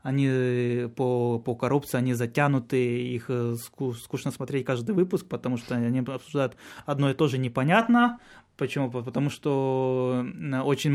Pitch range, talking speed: 130-170 Hz, 130 wpm